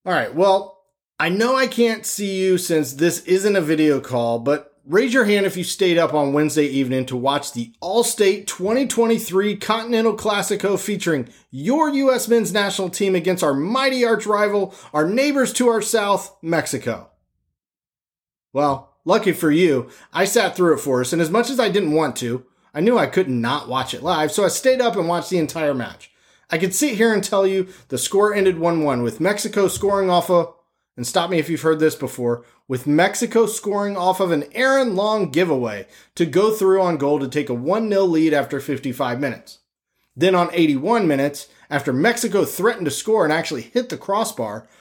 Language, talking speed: English, 195 wpm